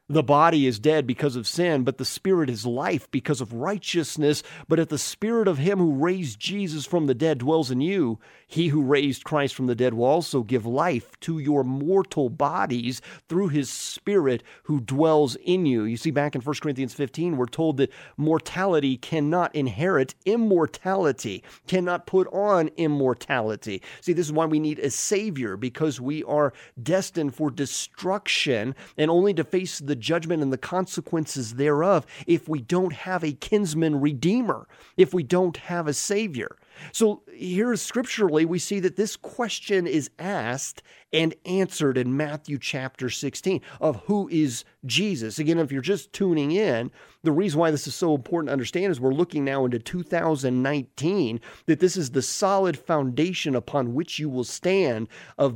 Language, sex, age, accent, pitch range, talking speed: English, male, 40-59, American, 135-180 Hz, 175 wpm